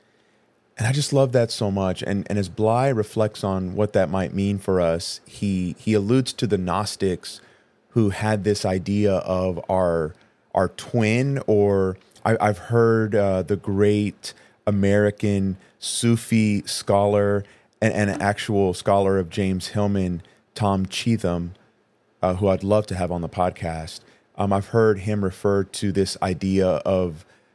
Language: English